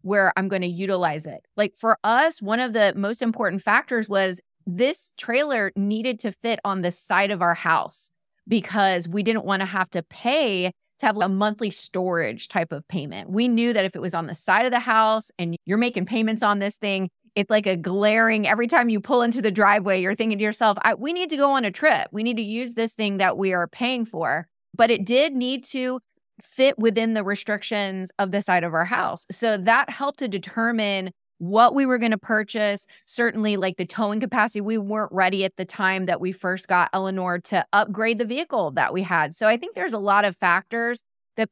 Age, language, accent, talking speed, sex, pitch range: 30-49, English, American, 220 wpm, female, 190-230 Hz